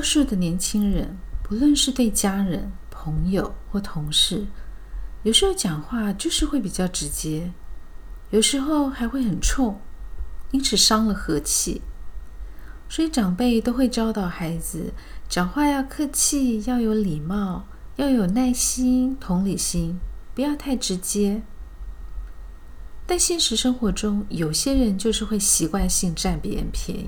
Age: 50-69